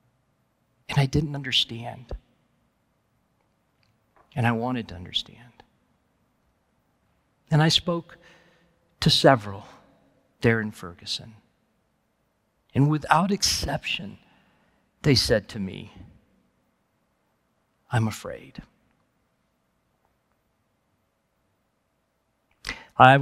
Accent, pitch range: American, 115-155 Hz